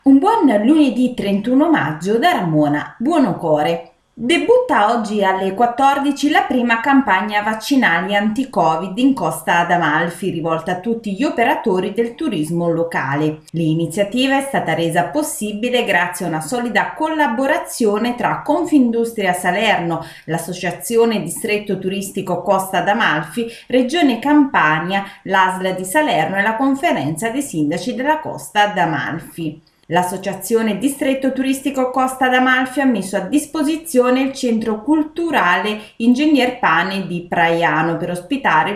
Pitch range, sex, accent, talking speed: 175-265 Hz, female, native, 120 wpm